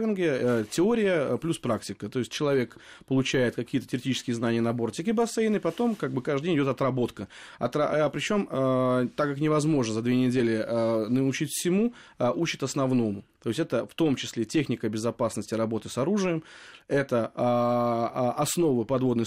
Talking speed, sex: 160 wpm, male